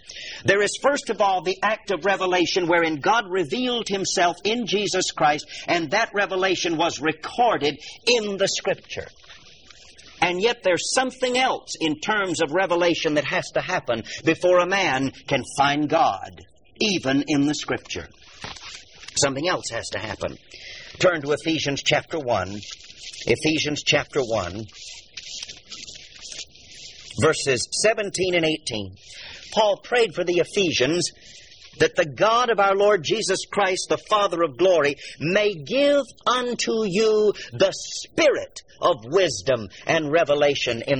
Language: English